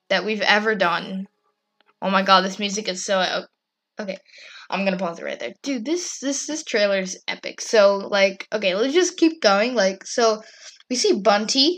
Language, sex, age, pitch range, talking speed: English, female, 20-39, 200-275 Hz, 190 wpm